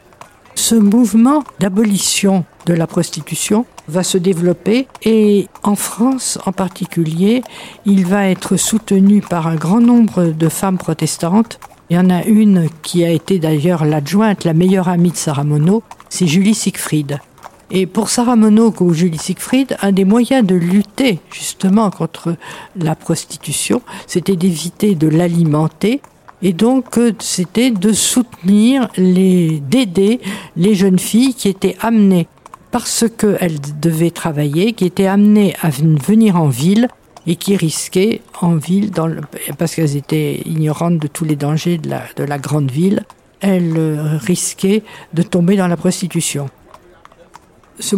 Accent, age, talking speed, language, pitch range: French, 50-69, 145 wpm, French, 165-210 Hz